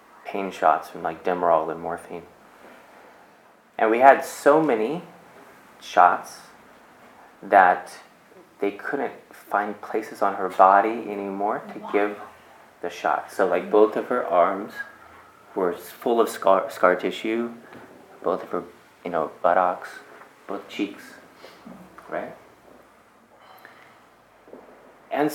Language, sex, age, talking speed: English, male, 30-49, 115 wpm